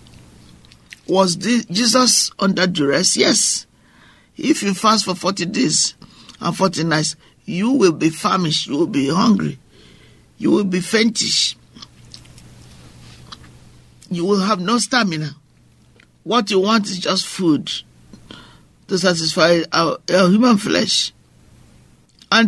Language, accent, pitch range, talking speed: English, Nigerian, 160-220 Hz, 115 wpm